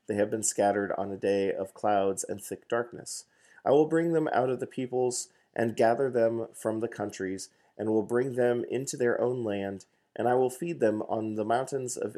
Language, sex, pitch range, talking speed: English, male, 100-125 Hz, 210 wpm